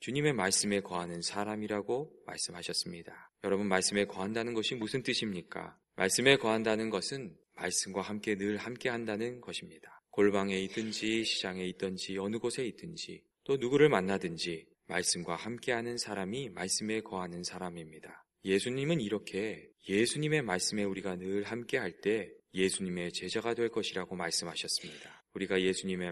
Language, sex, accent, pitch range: Korean, male, native, 95-115 Hz